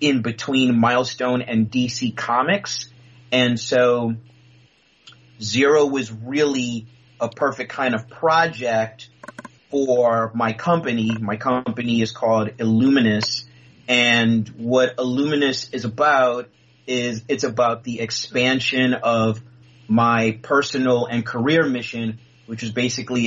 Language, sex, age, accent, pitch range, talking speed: English, male, 30-49, American, 115-125 Hz, 110 wpm